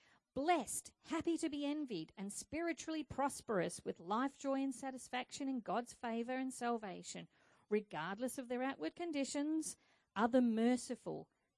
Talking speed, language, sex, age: 135 wpm, English, female, 50-69